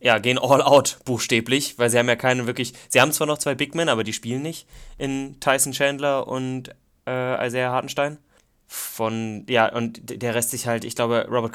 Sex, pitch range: male, 120-150 Hz